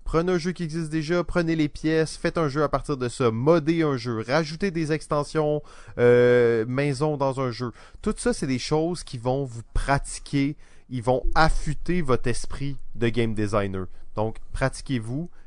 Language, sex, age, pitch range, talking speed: French, male, 20-39, 110-150 Hz, 180 wpm